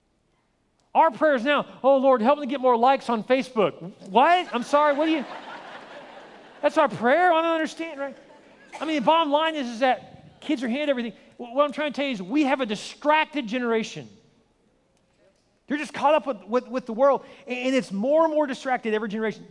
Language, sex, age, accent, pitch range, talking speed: English, male, 40-59, American, 195-275 Hz, 205 wpm